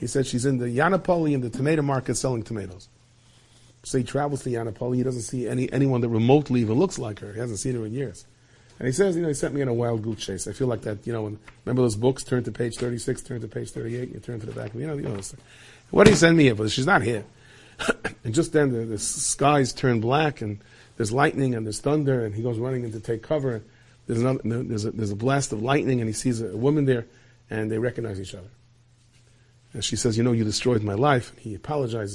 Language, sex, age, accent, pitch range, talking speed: English, male, 40-59, American, 115-135 Hz, 265 wpm